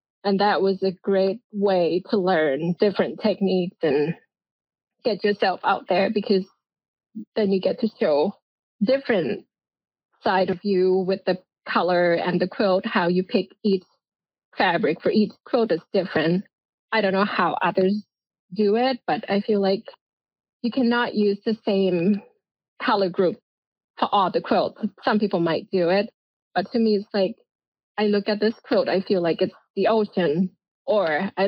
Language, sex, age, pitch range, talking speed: English, female, 20-39, 190-230 Hz, 165 wpm